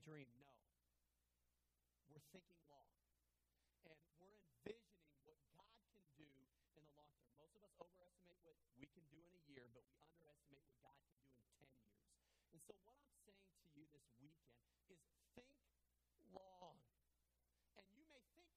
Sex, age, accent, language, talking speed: male, 40-59, American, English, 170 wpm